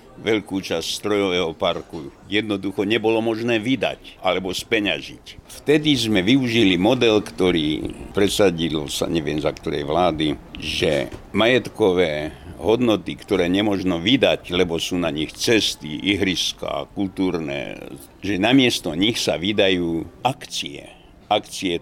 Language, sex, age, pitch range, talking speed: Slovak, male, 60-79, 90-115 Hz, 115 wpm